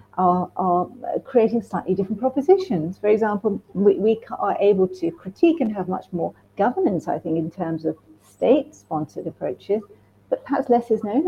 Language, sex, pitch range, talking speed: English, female, 170-215 Hz, 165 wpm